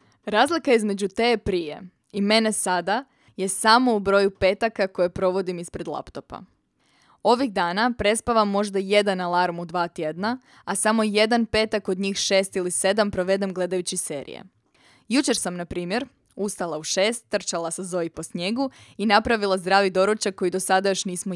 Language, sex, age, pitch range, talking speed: Croatian, female, 20-39, 185-225 Hz, 165 wpm